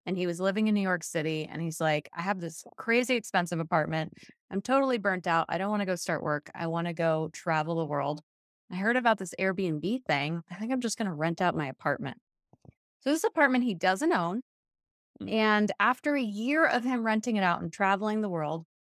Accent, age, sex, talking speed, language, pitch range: American, 20-39, female, 220 wpm, English, 165-215 Hz